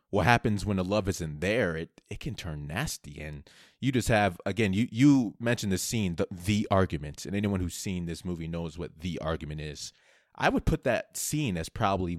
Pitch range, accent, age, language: 85-110 Hz, American, 30-49, English